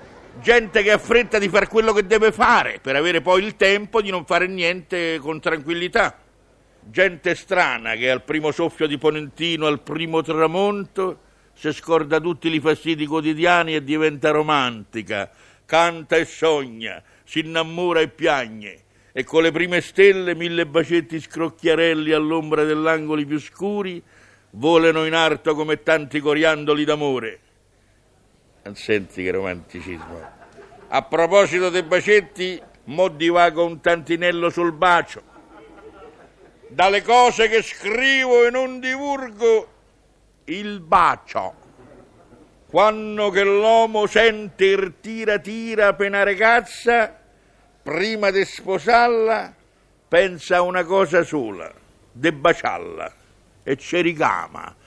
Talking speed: 125 wpm